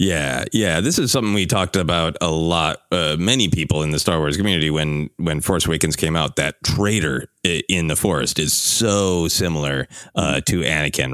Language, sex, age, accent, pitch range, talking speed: English, male, 30-49, American, 75-100 Hz, 190 wpm